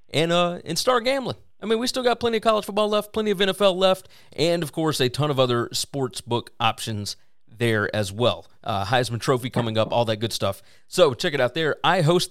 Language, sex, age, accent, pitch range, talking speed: English, male, 40-59, American, 115-165 Hz, 235 wpm